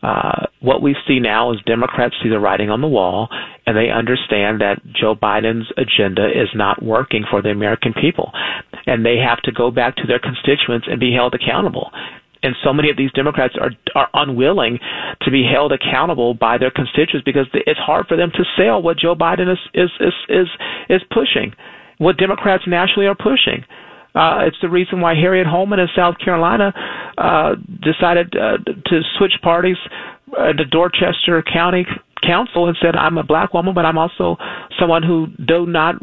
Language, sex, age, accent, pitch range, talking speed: English, male, 40-59, American, 130-175 Hz, 185 wpm